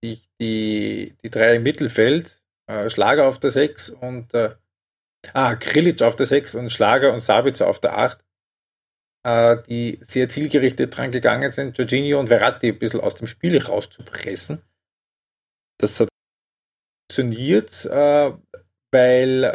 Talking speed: 140 wpm